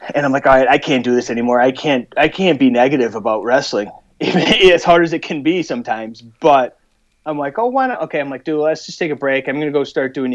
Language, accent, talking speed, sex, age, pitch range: English, American, 265 wpm, male, 30-49, 110-135 Hz